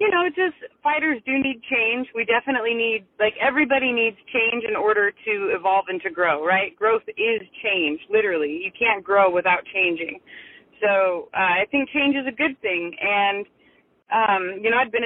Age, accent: 30-49, American